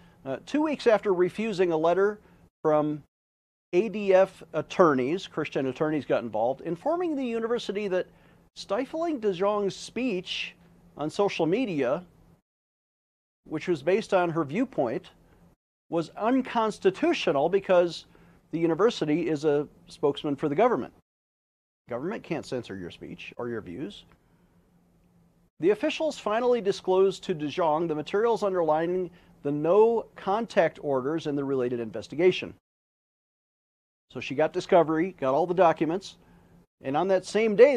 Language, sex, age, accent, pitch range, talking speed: English, male, 40-59, American, 155-220 Hz, 125 wpm